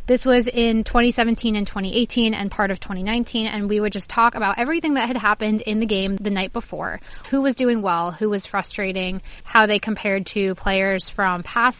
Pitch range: 195-235 Hz